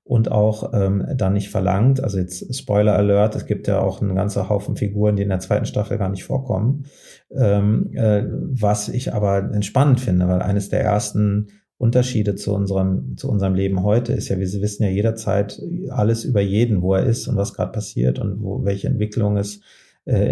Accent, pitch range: German, 100-115 Hz